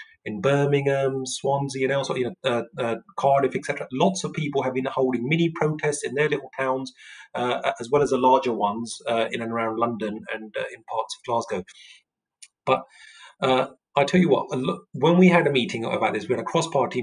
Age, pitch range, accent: 30-49, 120-170 Hz, British